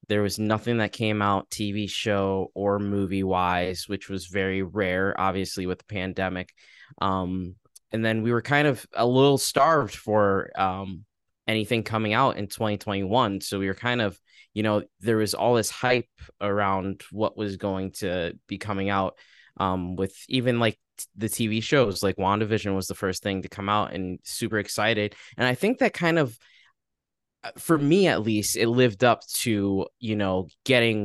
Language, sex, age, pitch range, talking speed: English, male, 10-29, 95-120 Hz, 180 wpm